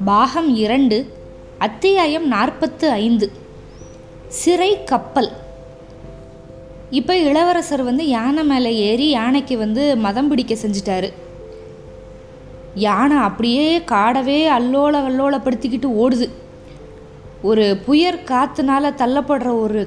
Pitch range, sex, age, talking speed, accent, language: 230-295 Hz, female, 20-39, 90 wpm, native, Tamil